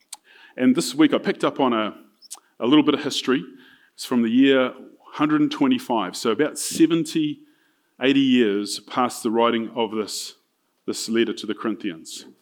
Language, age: English, 30-49